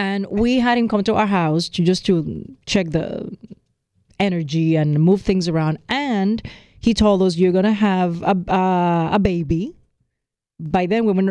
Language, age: English, 30-49